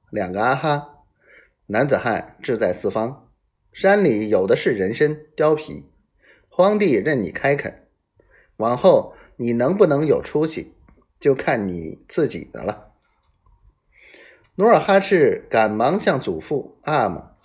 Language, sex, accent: Chinese, male, native